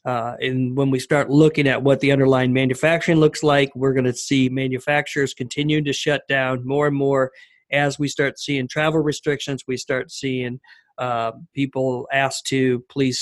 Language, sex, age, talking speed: English, male, 50-69, 180 wpm